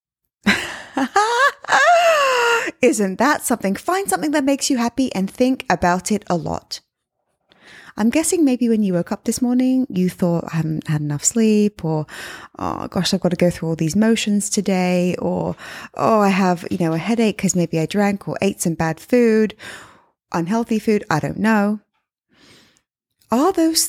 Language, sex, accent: English, female, British